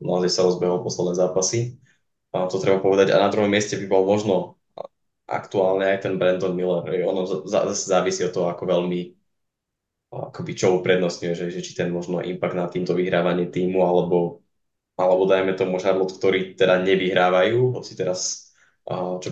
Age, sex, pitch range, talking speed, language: 20-39, male, 90-100 Hz, 170 wpm, Slovak